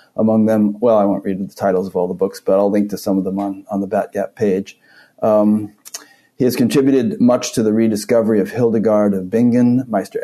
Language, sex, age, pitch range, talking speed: English, male, 40-59, 100-115 Hz, 215 wpm